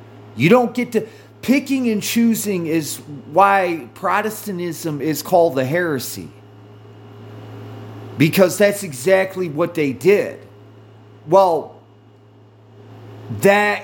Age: 40-59